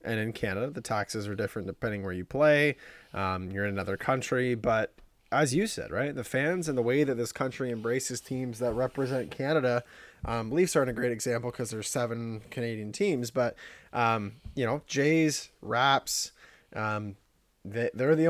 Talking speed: 175 wpm